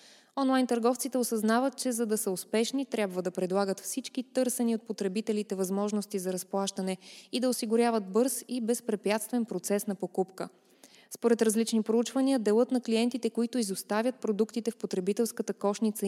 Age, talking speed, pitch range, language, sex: 20-39, 145 wpm, 195-240 Hz, Bulgarian, female